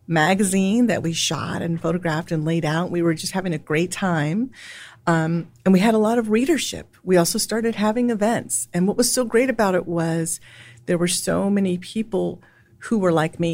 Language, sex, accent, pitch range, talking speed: English, female, American, 160-205 Hz, 205 wpm